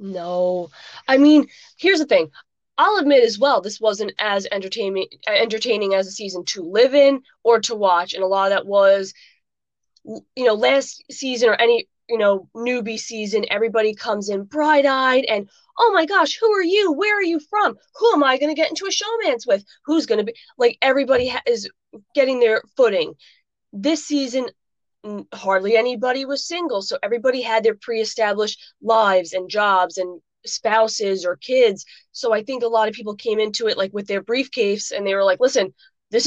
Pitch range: 200-285 Hz